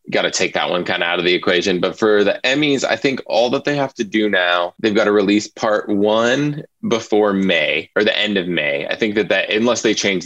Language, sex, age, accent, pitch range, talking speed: English, male, 20-39, American, 90-115 Hz, 255 wpm